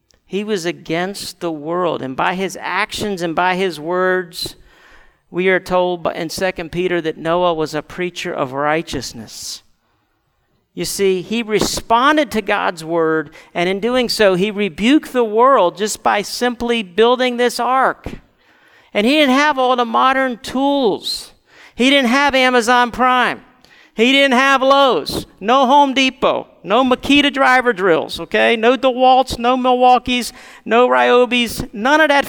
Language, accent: English, American